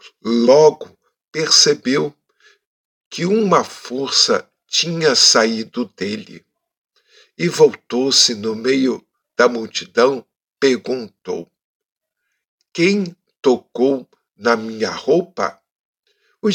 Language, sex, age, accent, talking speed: Portuguese, male, 60-79, Brazilian, 75 wpm